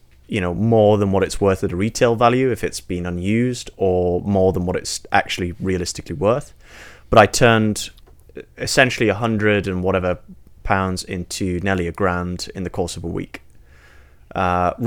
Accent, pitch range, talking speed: British, 90-105 Hz, 175 wpm